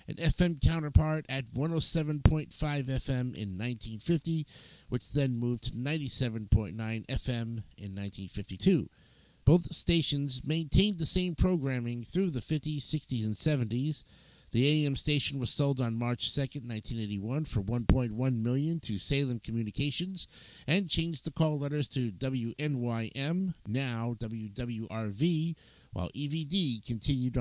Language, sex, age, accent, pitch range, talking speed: English, male, 50-69, American, 115-150 Hz, 120 wpm